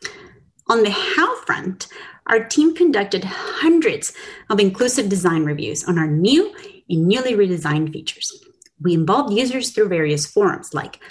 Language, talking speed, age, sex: English, 140 wpm, 30-49, female